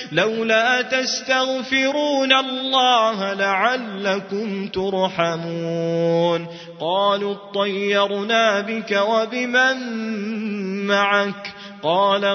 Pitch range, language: 190-230 Hz, Arabic